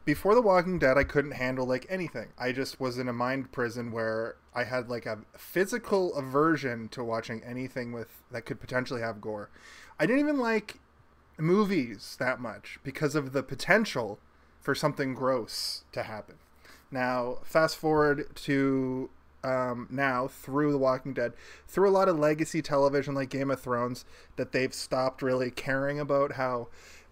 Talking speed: 165 wpm